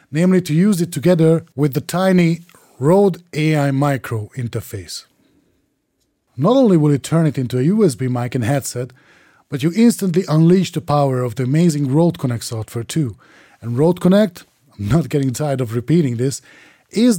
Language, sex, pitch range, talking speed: English, male, 125-165 Hz, 170 wpm